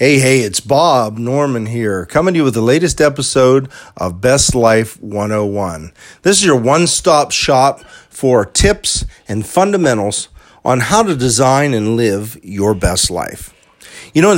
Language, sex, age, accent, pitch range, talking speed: English, male, 40-59, American, 110-140 Hz, 160 wpm